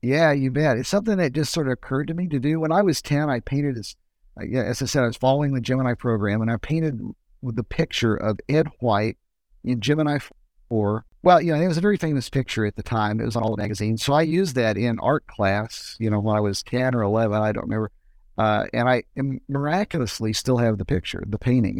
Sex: male